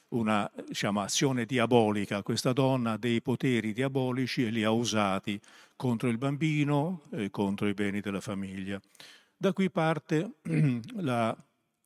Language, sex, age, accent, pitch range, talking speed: Italian, male, 50-69, native, 105-135 Hz, 135 wpm